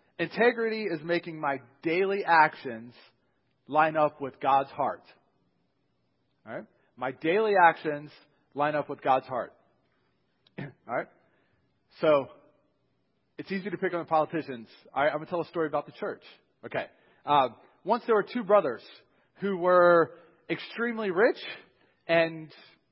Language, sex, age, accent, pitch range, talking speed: English, male, 40-59, American, 145-190 Hz, 140 wpm